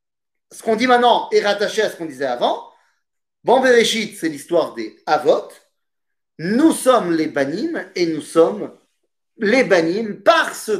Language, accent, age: French, French, 40-59